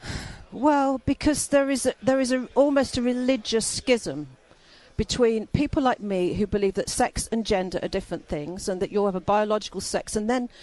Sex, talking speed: female, 190 wpm